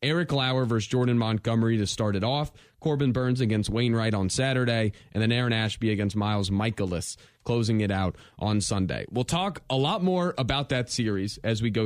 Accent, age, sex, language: American, 20-39, male, English